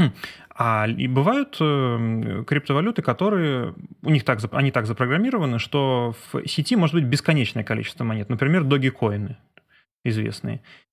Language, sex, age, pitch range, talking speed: Russian, male, 30-49, 115-155 Hz, 115 wpm